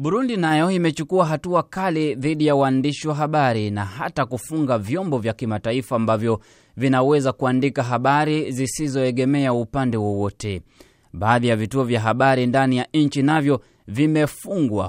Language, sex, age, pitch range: Swahili, male, 20-39, 115-145 Hz